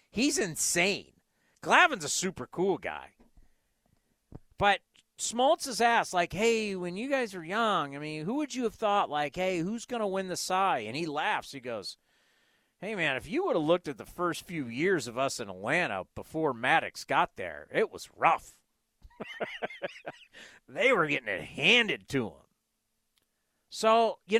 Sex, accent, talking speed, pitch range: male, American, 170 wpm, 155-230 Hz